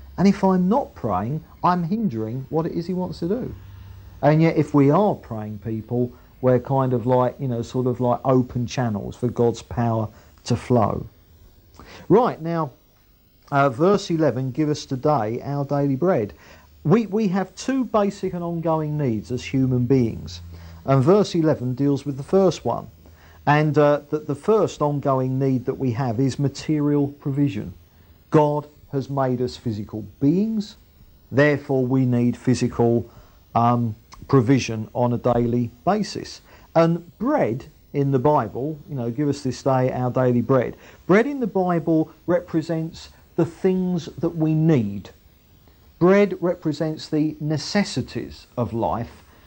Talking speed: 155 wpm